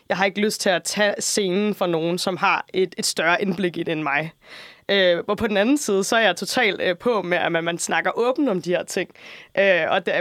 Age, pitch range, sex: 20-39, 185-235 Hz, female